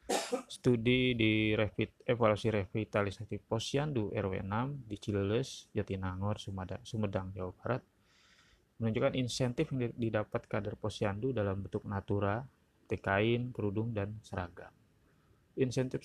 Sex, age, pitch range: male, 30-49, 95-120 Hz